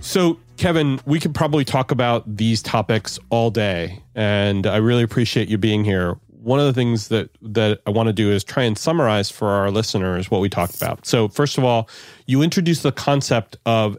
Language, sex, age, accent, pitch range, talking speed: English, male, 40-59, American, 100-125 Hz, 205 wpm